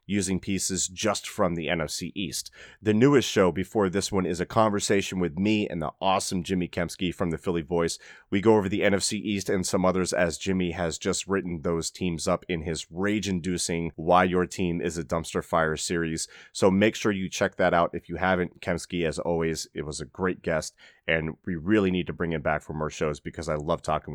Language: English